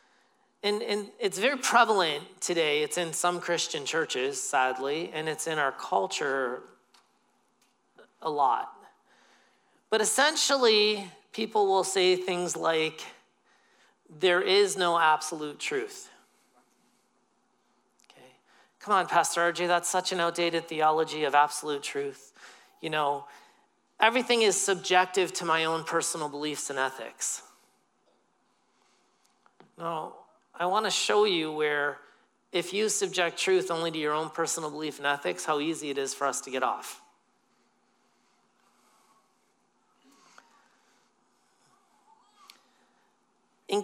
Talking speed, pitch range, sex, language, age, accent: 115 wpm, 155-205 Hz, male, English, 40-59, American